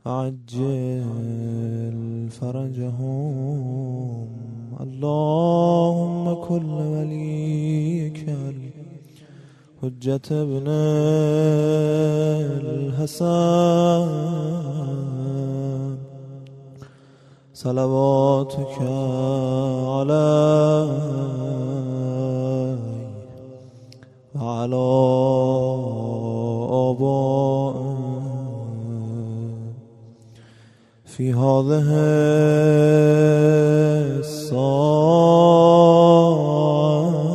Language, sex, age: Persian, male, 20-39